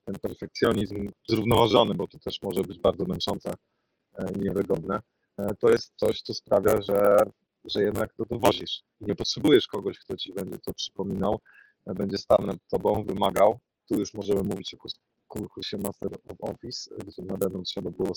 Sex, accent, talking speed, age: male, native, 160 wpm, 30-49